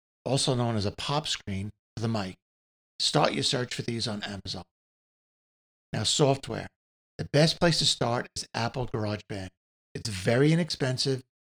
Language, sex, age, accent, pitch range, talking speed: English, male, 60-79, American, 100-140 Hz, 150 wpm